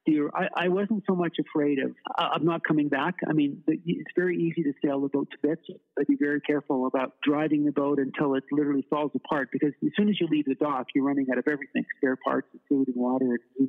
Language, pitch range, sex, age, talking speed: English, 135-165 Hz, male, 50-69, 230 wpm